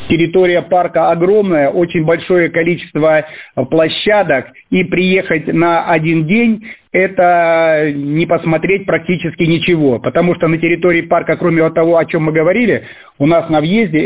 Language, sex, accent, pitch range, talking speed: Russian, male, native, 150-175 Hz, 135 wpm